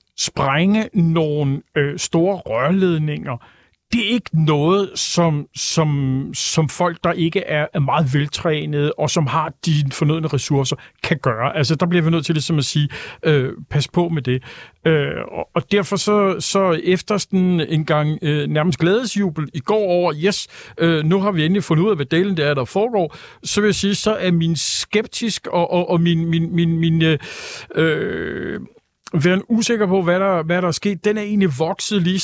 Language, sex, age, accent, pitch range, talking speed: Danish, male, 50-69, native, 150-185 Hz, 190 wpm